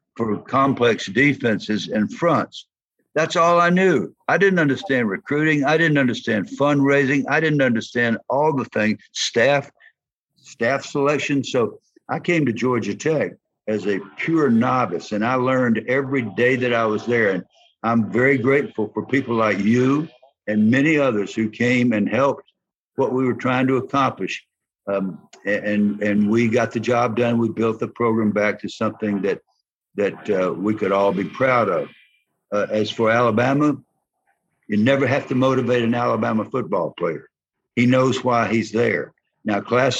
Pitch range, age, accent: 110-140 Hz, 60-79, American